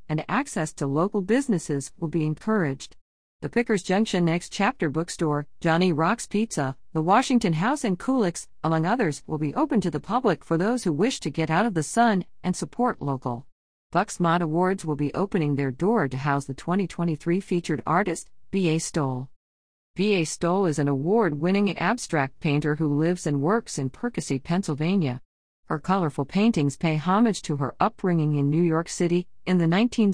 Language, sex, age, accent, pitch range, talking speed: English, female, 50-69, American, 145-195 Hz, 175 wpm